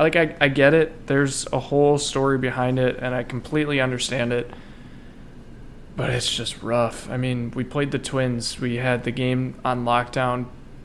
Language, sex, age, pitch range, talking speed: English, male, 20-39, 120-140 Hz, 175 wpm